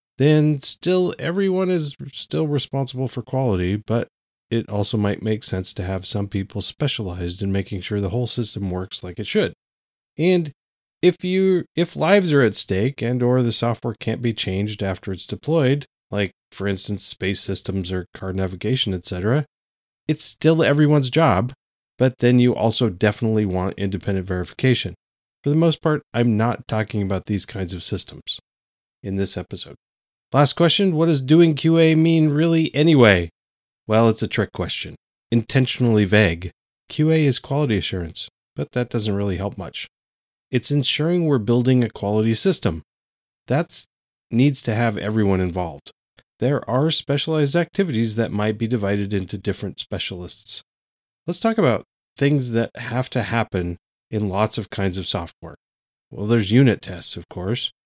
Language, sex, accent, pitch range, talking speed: English, male, American, 100-140 Hz, 160 wpm